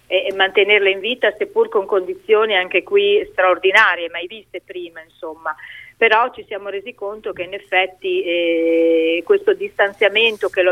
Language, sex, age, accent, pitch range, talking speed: Italian, female, 40-59, native, 185-265 Hz, 150 wpm